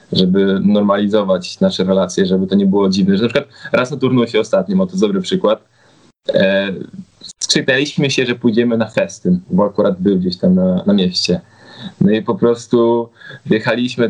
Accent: native